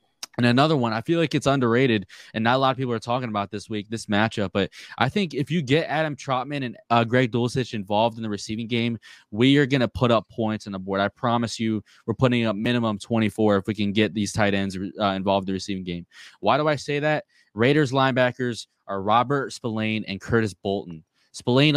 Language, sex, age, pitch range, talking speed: English, male, 20-39, 105-125 Hz, 230 wpm